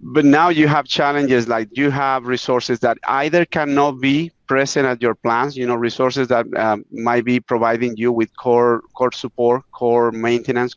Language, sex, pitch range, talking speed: English, male, 115-135 Hz, 180 wpm